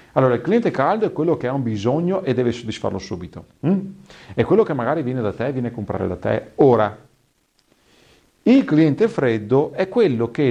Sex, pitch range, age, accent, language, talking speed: male, 115-165 Hz, 40-59, native, Italian, 195 wpm